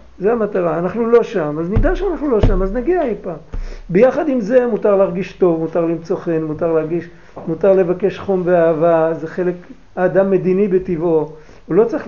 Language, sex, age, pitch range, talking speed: Hebrew, male, 50-69, 165-210 Hz, 180 wpm